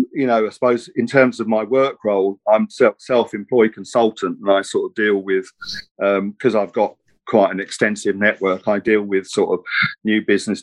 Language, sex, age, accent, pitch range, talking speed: English, male, 50-69, British, 100-115 Hz, 190 wpm